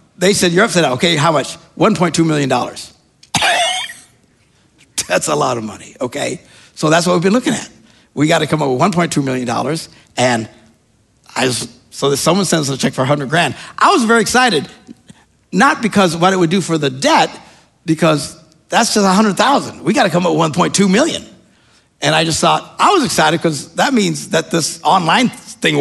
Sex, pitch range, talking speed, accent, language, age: male, 155-210 Hz, 195 wpm, American, English, 50-69